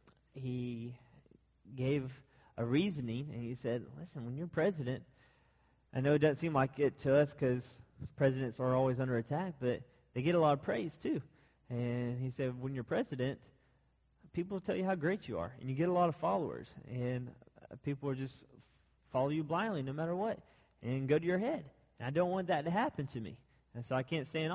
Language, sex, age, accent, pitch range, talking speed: English, male, 30-49, American, 125-165 Hz, 205 wpm